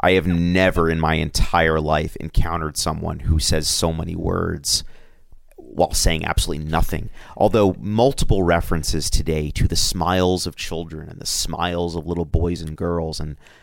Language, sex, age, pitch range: English, male, 30-49, 80-90 Hz